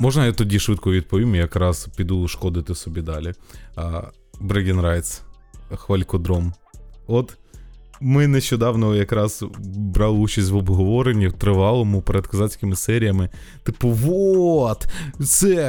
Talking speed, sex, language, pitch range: 115 wpm, male, Ukrainian, 95-130 Hz